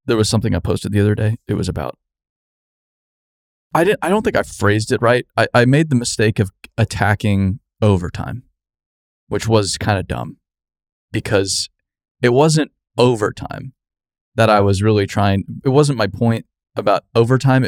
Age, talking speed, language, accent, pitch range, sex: 20-39, 165 wpm, English, American, 100-120 Hz, male